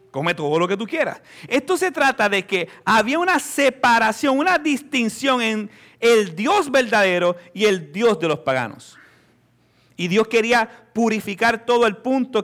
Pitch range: 180-250 Hz